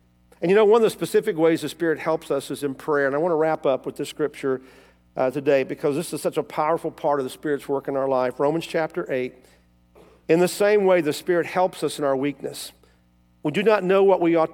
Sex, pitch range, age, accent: male, 130-160 Hz, 50-69, American